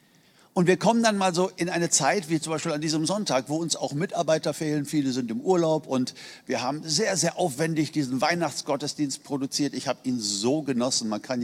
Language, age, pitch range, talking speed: German, 50-69, 145-180 Hz, 210 wpm